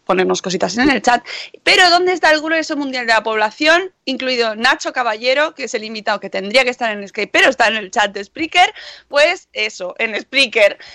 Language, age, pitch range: Spanish, 20-39, 215-265 Hz